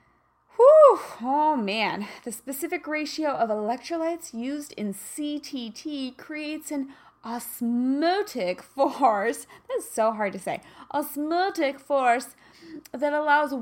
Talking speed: 105 wpm